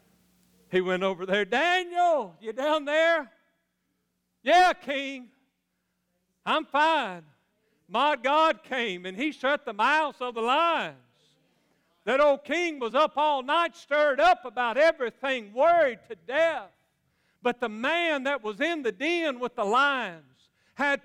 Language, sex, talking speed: English, male, 140 wpm